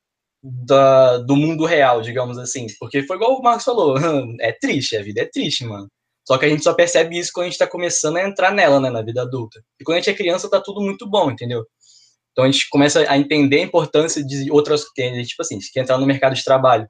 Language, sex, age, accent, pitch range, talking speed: Portuguese, male, 10-29, Brazilian, 125-155 Hz, 240 wpm